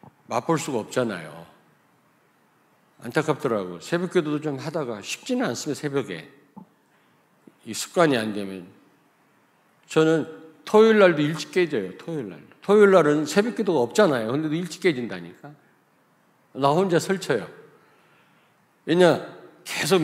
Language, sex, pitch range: Korean, male, 130-185 Hz